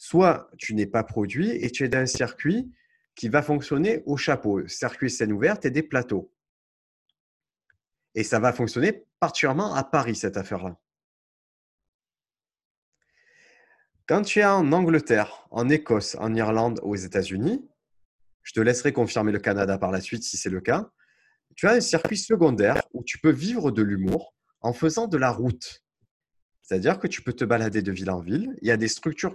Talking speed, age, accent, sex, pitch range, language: 175 wpm, 30-49, French, male, 105-155 Hz, French